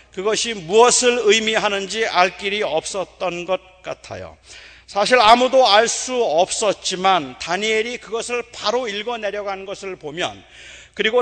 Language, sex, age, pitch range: Korean, male, 40-59, 180-225 Hz